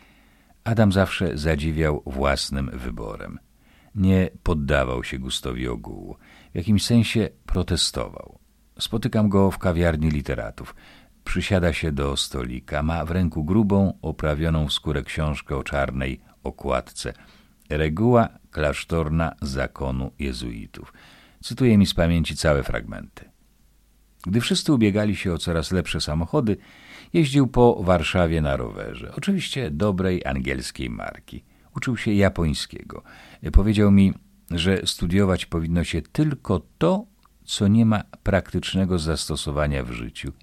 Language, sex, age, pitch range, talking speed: Polish, male, 50-69, 70-100 Hz, 115 wpm